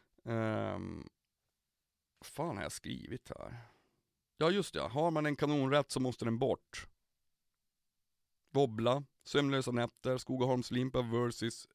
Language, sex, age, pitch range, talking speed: Swedish, male, 30-49, 110-135 Hz, 110 wpm